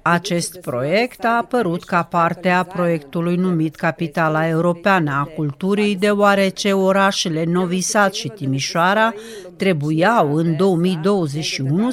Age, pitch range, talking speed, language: 40-59, 155-205 Hz, 105 wpm, Romanian